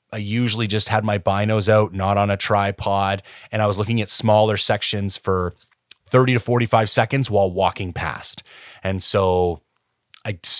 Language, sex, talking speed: English, male, 165 wpm